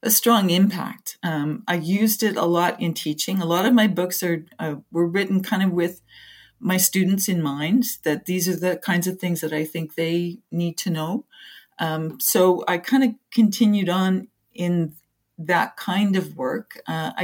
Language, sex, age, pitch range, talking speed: English, female, 40-59, 160-195 Hz, 190 wpm